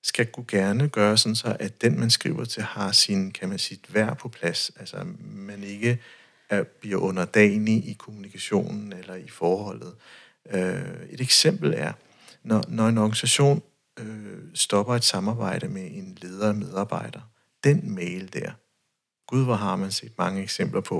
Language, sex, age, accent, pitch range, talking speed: Danish, male, 60-79, native, 105-130 Hz, 155 wpm